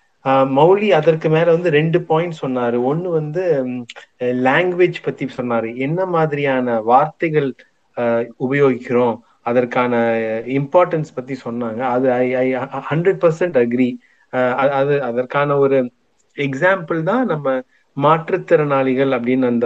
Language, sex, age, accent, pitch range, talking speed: Tamil, male, 30-49, native, 125-165 Hz, 100 wpm